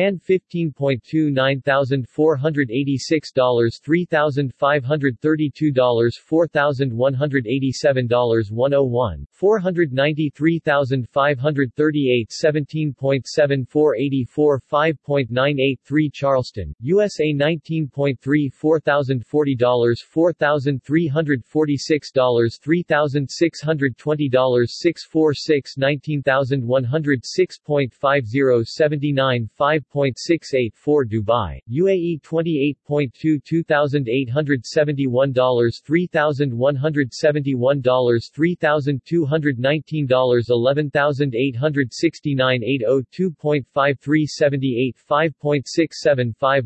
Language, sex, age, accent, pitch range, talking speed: English, male, 40-59, American, 130-155 Hz, 115 wpm